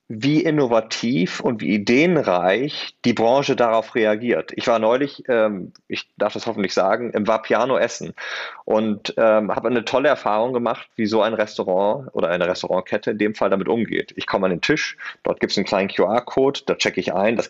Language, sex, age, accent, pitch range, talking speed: German, male, 30-49, German, 110-135 Hz, 190 wpm